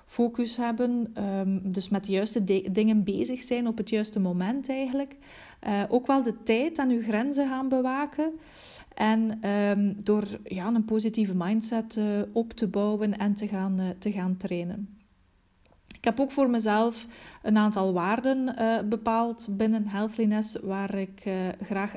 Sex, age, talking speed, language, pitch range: female, 30-49, 150 wpm, Dutch, 200-230 Hz